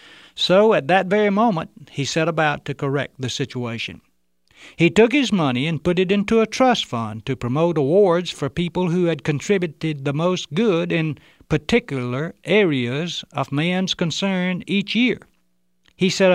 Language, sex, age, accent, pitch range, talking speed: English, male, 60-79, American, 120-175 Hz, 160 wpm